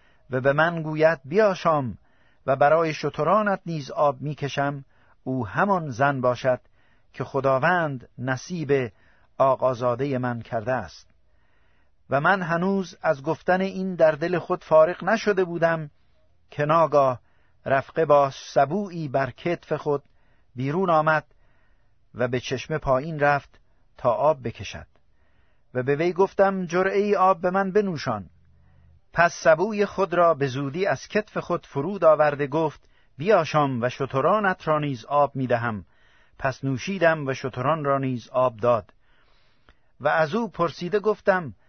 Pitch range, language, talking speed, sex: 125-170 Hz, Persian, 135 wpm, male